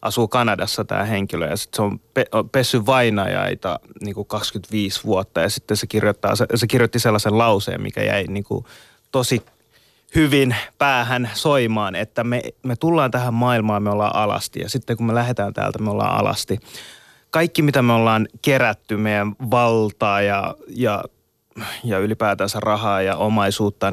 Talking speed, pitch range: 160 wpm, 105-125 Hz